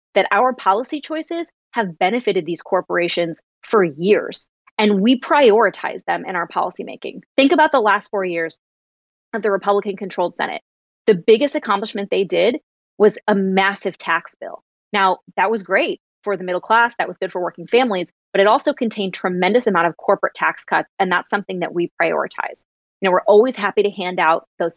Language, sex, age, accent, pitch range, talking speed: English, female, 20-39, American, 180-220 Hz, 185 wpm